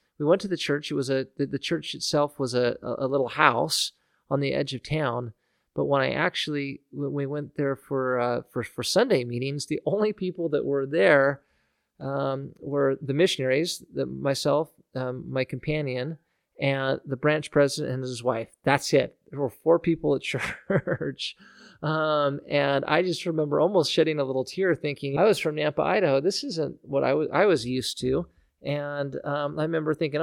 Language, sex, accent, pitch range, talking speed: English, male, American, 130-155 Hz, 190 wpm